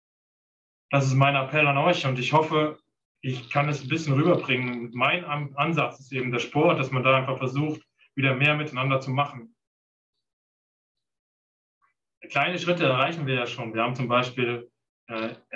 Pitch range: 125-145 Hz